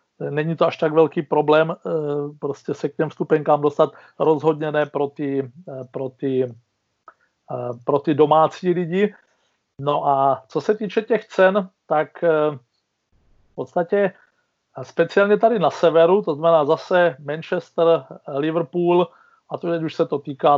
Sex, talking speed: male, 130 wpm